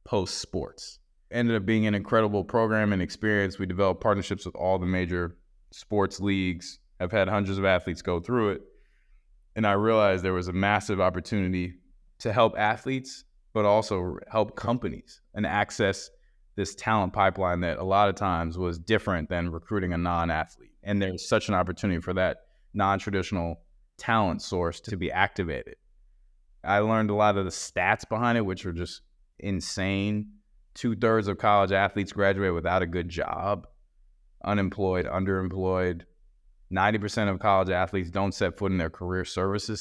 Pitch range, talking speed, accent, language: 90-105 Hz, 160 wpm, American, English